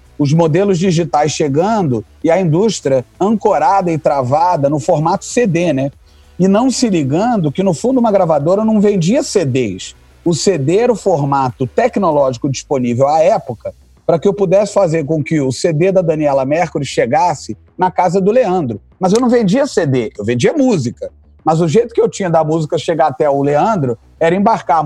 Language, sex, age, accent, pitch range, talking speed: Portuguese, male, 40-59, Brazilian, 130-190 Hz, 180 wpm